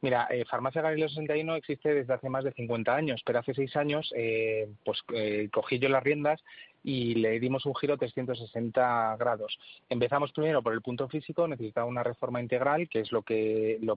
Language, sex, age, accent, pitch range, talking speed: Spanish, male, 30-49, Spanish, 120-145 Hz, 185 wpm